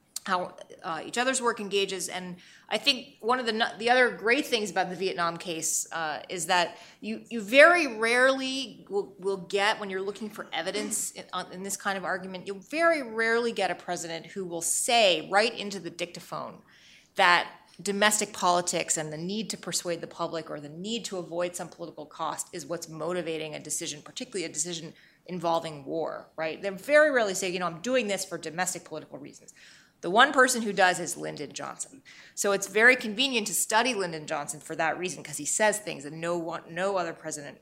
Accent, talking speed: American, 200 wpm